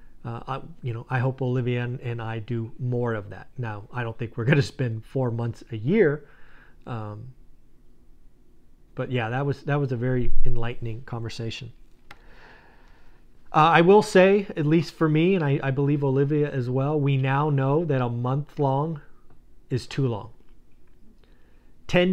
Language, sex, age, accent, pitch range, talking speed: English, male, 40-59, American, 115-145 Hz, 165 wpm